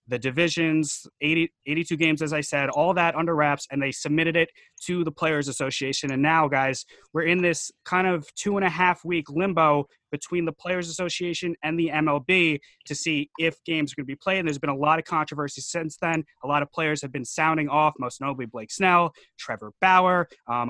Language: English